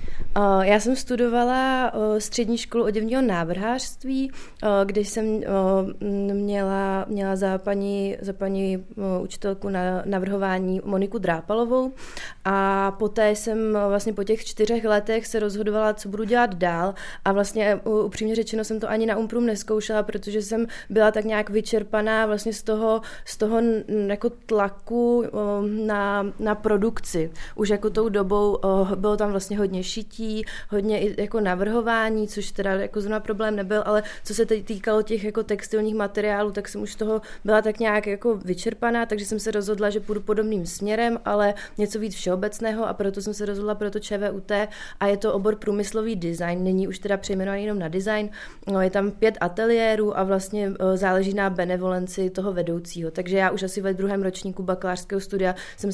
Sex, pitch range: female, 195-220 Hz